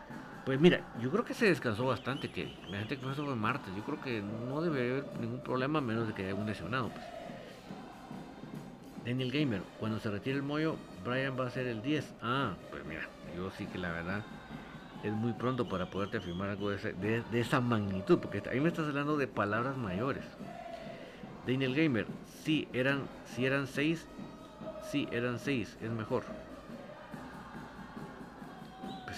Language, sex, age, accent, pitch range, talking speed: Spanish, male, 50-69, Mexican, 110-155 Hz, 175 wpm